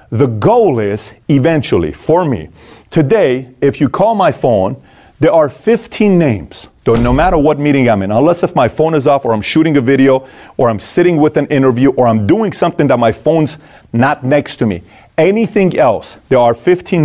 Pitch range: 120-155 Hz